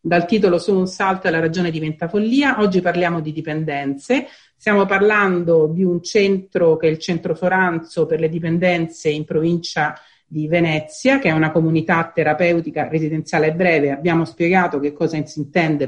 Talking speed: 165 wpm